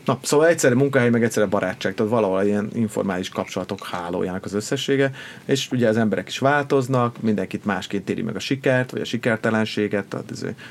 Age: 30-49